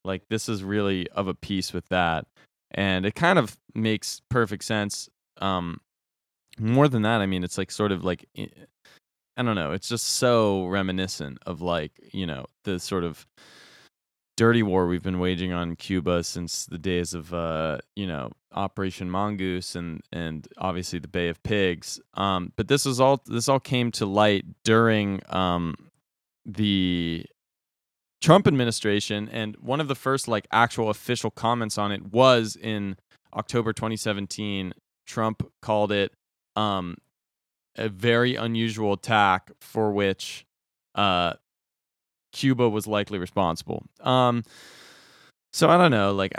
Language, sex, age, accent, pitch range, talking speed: English, male, 20-39, American, 90-115 Hz, 150 wpm